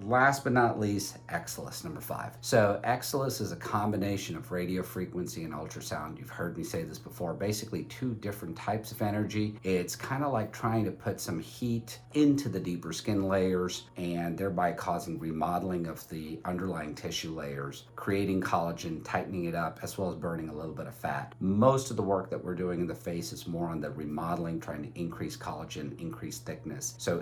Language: English